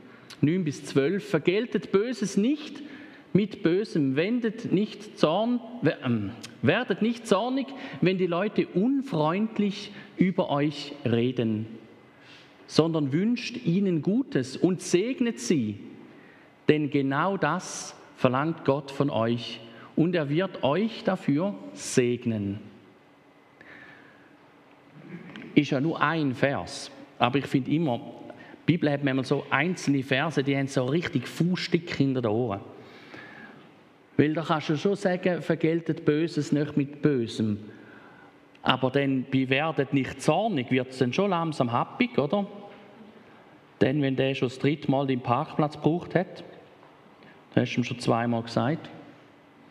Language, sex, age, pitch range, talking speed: German, male, 50-69, 135-195 Hz, 130 wpm